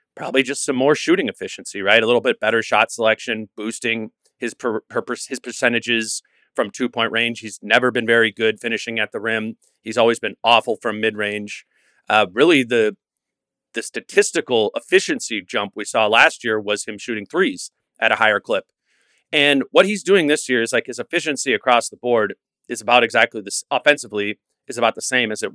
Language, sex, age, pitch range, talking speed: English, male, 30-49, 115-150 Hz, 195 wpm